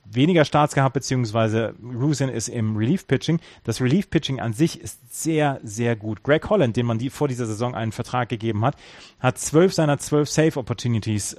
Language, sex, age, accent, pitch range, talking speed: German, male, 30-49, German, 115-150 Hz, 190 wpm